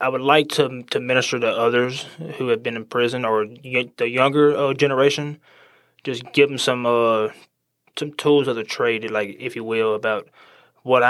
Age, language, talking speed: 20-39, English, 185 wpm